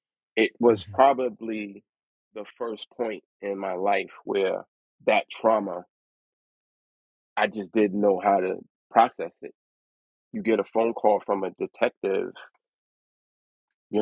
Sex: male